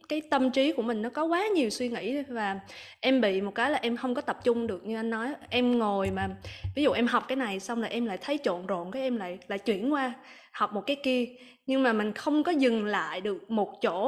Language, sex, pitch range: Vietnamese, female, 200-260 Hz